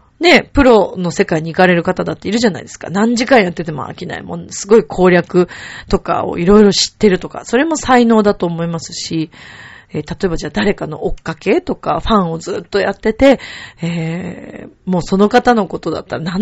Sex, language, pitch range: female, Japanese, 160-220 Hz